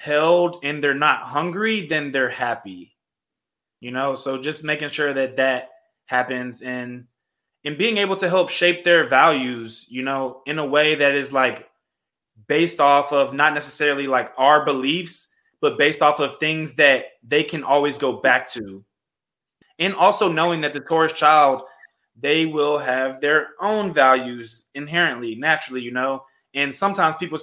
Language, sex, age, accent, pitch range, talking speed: English, male, 20-39, American, 135-160 Hz, 160 wpm